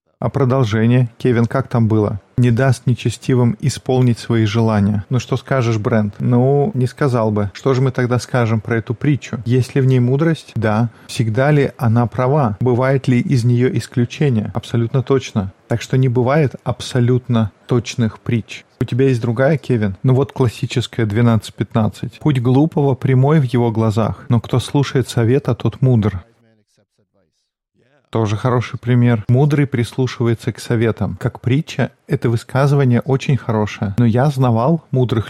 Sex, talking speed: male, 155 wpm